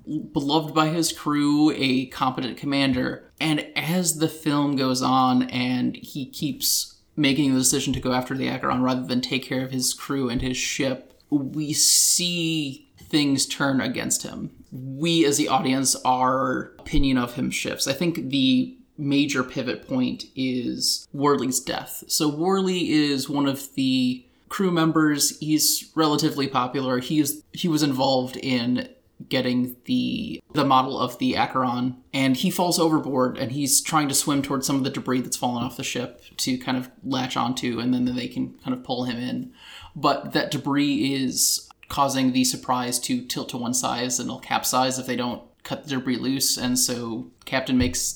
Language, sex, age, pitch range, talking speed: English, male, 20-39, 125-150 Hz, 175 wpm